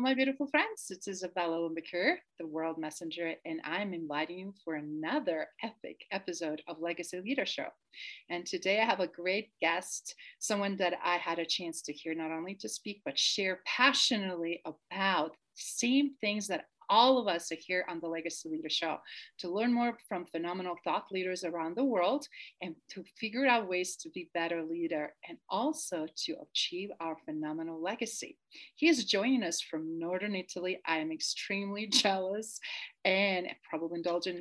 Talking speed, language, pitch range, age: 175 wpm, English, 170-235 Hz, 40-59